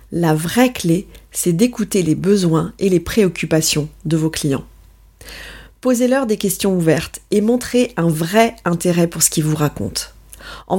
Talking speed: 155 wpm